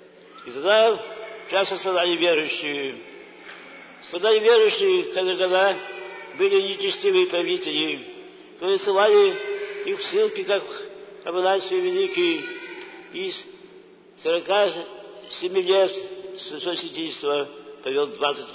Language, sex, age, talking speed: Greek, male, 60-79, 80 wpm